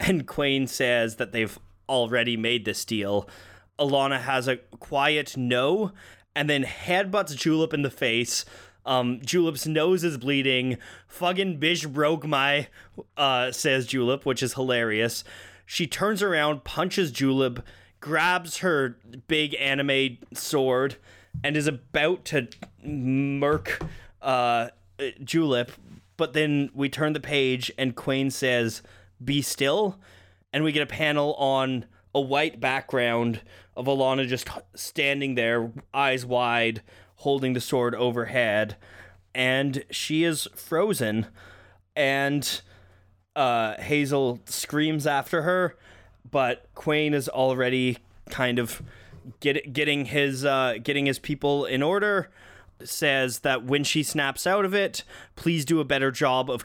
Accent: American